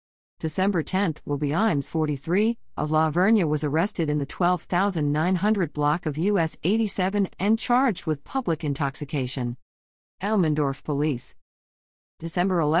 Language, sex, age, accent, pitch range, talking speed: English, female, 50-69, American, 150-200 Hz, 120 wpm